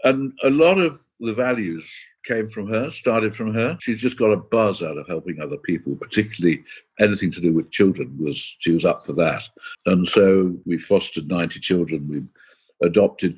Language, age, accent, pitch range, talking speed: English, 60-79, British, 90-110 Hz, 190 wpm